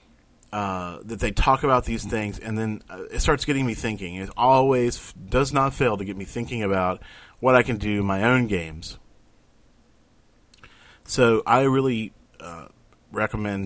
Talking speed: 170 wpm